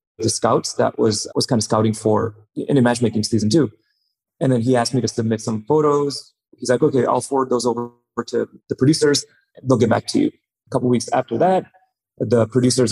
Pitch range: 115-140 Hz